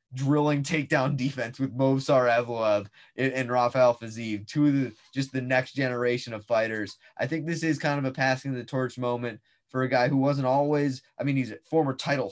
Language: English